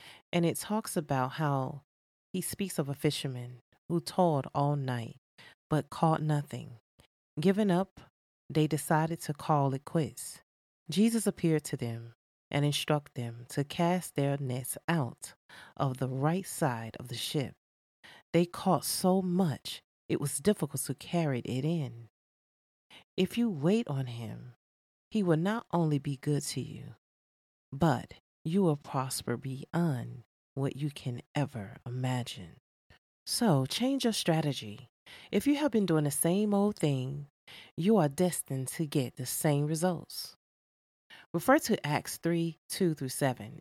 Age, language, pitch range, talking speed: 30-49, English, 130-170 Hz, 145 wpm